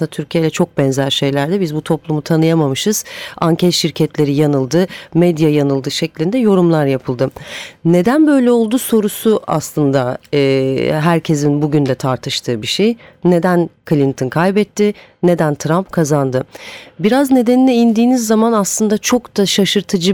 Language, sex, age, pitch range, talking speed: Turkish, female, 40-59, 155-200 Hz, 130 wpm